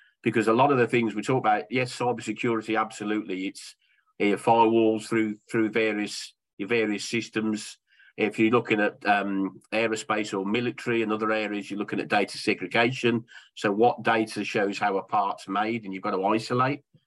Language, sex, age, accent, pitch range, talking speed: English, male, 40-59, British, 105-120 Hz, 180 wpm